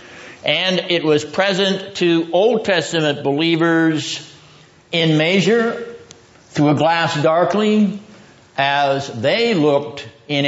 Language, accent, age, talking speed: English, American, 60-79, 105 wpm